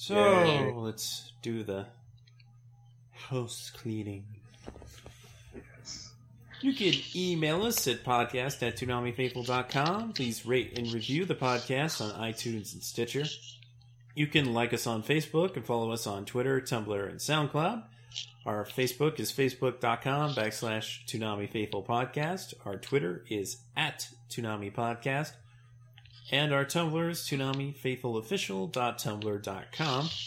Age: 30-49